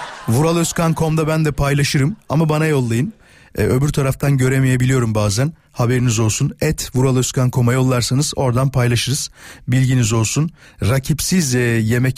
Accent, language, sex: native, Turkish, male